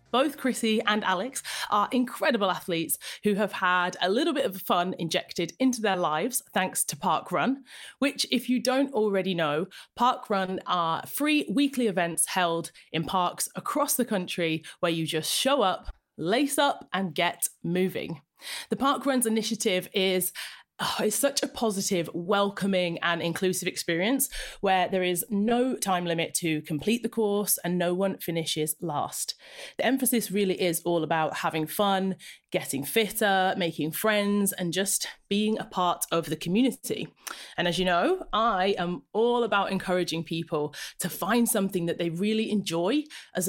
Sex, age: female, 30-49